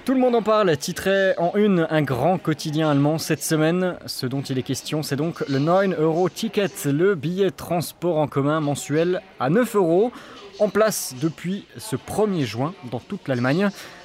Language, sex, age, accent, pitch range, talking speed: French, male, 20-39, French, 135-185 Hz, 175 wpm